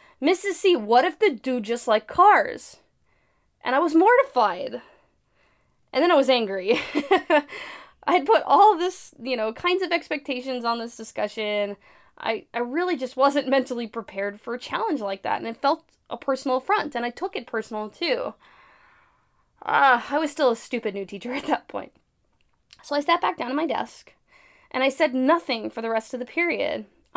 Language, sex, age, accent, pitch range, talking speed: English, female, 10-29, American, 225-305 Hz, 190 wpm